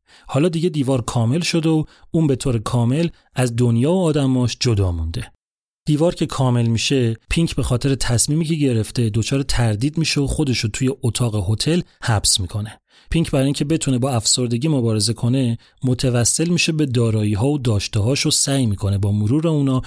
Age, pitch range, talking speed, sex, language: 30-49, 110-145 Hz, 170 wpm, male, Persian